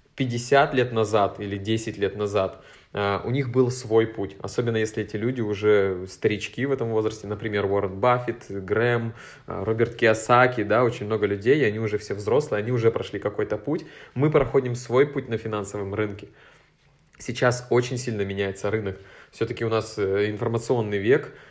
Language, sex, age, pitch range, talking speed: Russian, male, 20-39, 105-125 Hz, 160 wpm